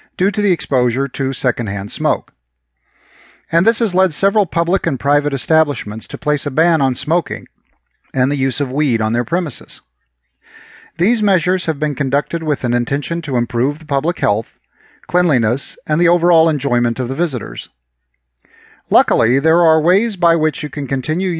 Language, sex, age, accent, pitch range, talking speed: English, male, 40-59, American, 115-165 Hz, 170 wpm